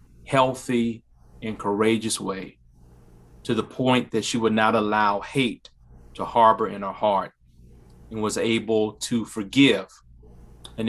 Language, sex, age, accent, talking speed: English, male, 40-59, American, 130 wpm